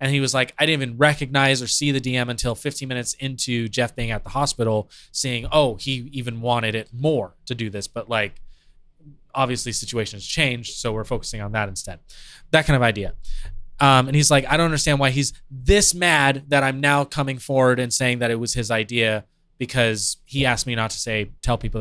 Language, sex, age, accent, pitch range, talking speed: English, male, 20-39, American, 115-145 Hz, 215 wpm